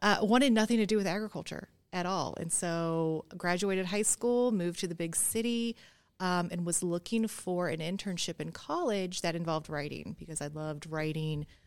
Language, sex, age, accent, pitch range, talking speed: English, female, 30-49, American, 165-195 Hz, 180 wpm